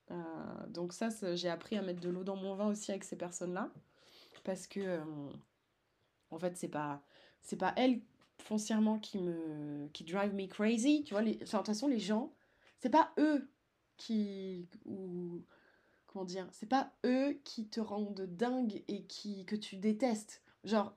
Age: 20-39